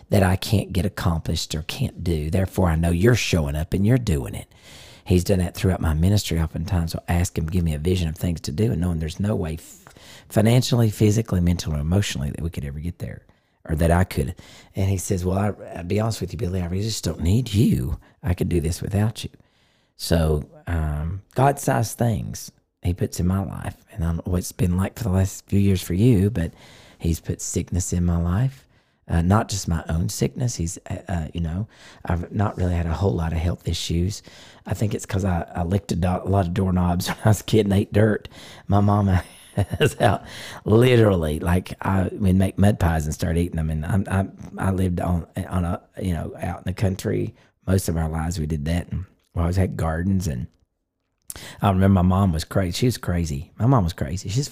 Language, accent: English, American